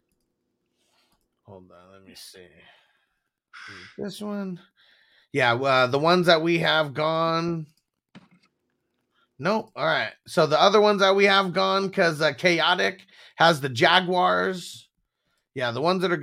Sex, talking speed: male, 135 wpm